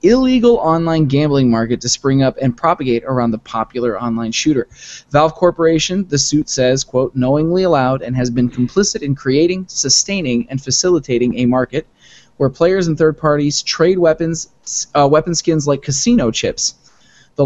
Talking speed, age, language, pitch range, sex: 160 wpm, 20-39, English, 130-160 Hz, male